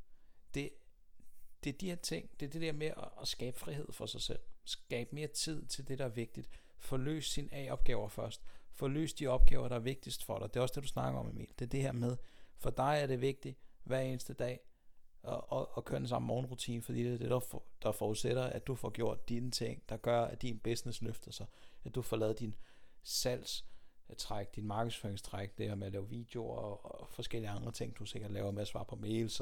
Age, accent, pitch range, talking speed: 60-79, native, 105-130 Hz, 235 wpm